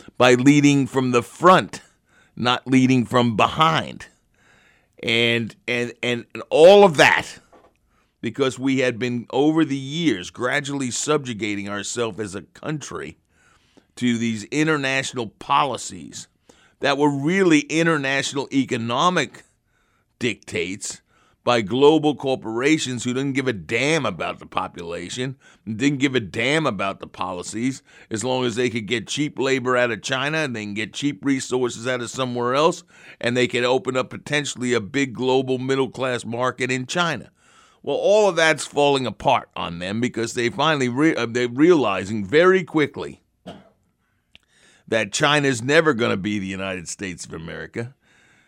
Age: 50-69